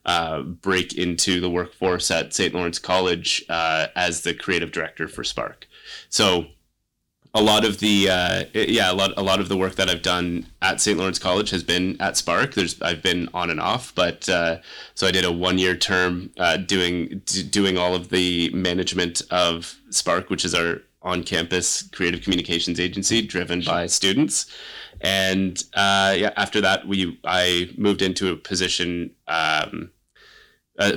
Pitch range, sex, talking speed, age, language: 85-95 Hz, male, 165 wpm, 20-39, English